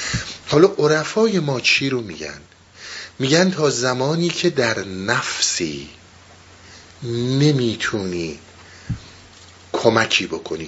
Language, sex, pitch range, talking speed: Persian, male, 105-170 Hz, 90 wpm